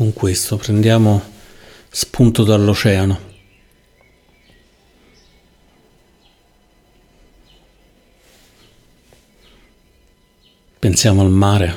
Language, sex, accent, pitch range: Italian, male, native, 95-110 Hz